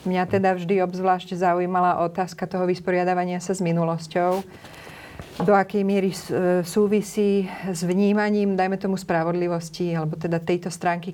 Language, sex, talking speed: Slovak, female, 130 wpm